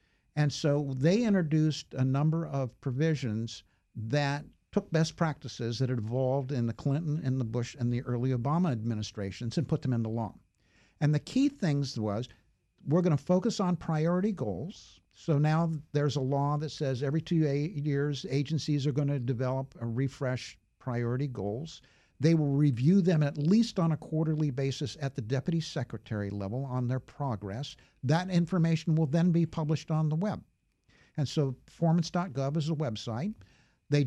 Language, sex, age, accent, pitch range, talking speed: English, male, 60-79, American, 130-160 Hz, 170 wpm